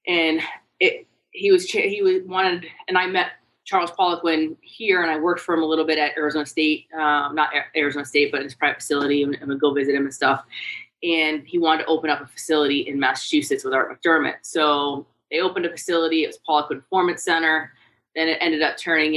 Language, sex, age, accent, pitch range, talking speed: English, female, 20-39, American, 145-175 Hz, 210 wpm